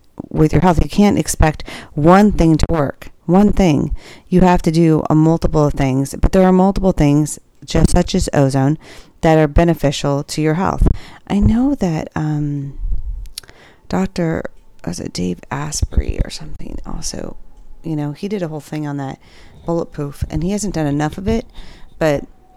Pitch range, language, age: 145-180 Hz, English, 40-59